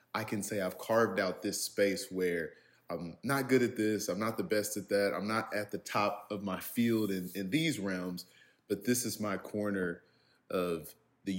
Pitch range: 90-110 Hz